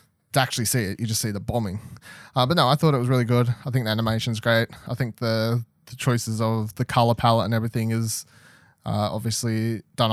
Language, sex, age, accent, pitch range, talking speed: English, male, 10-29, Australian, 110-125 Hz, 225 wpm